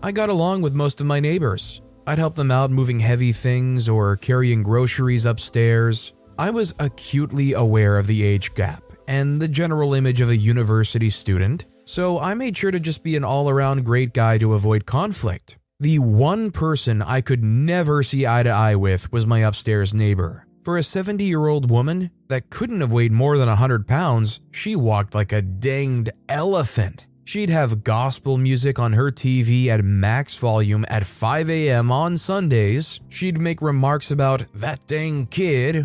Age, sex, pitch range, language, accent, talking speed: 20-39, male, 115-150 Hz, English, American, 170 wpm